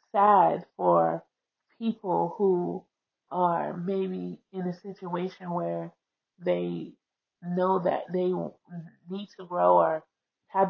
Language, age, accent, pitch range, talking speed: English, 20-39, American, 170-190 Hz, 105 wpm